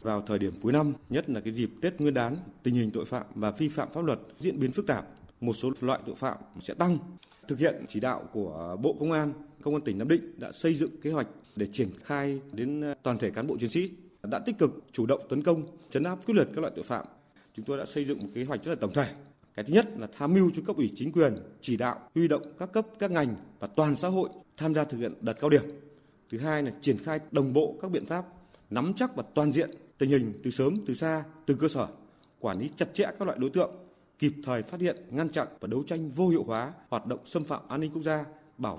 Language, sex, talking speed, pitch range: Vietnamese, male, 260 wpm, 130-165 Hz